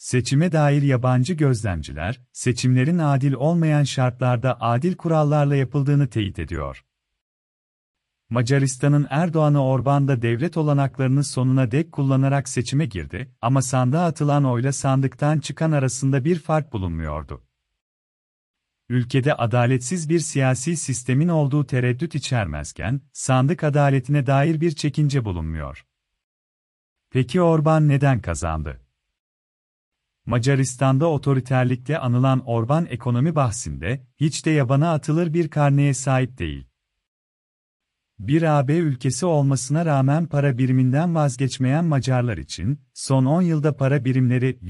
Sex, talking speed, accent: male, 105 wpm, native